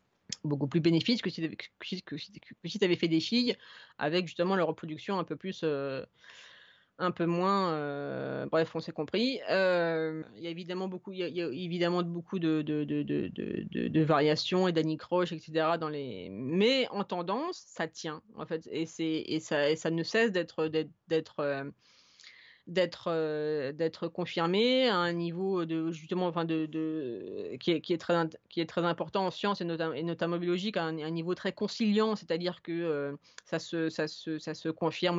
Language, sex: English, female